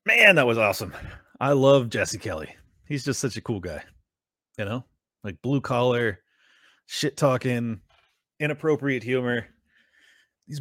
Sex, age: male, 30-49